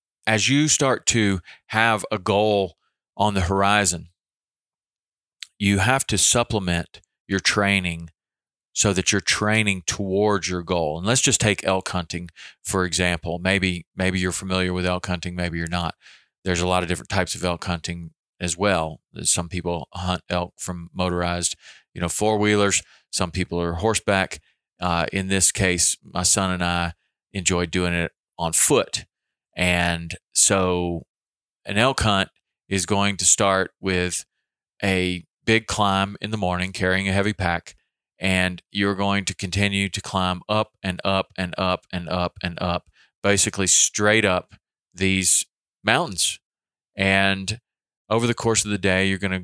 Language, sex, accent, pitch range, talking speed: English, male, American, 90-100 Hz, 155 wpm